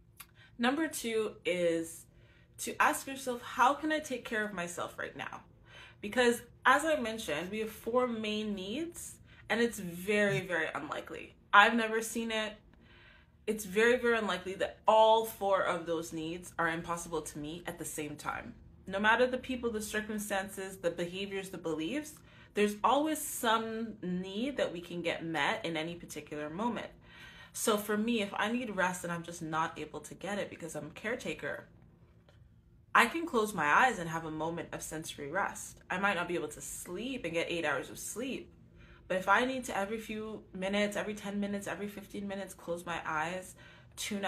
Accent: American